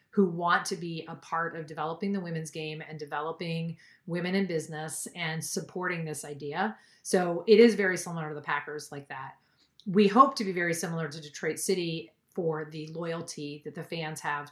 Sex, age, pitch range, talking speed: female, 40-59, 160-195 Hz, 190 wpm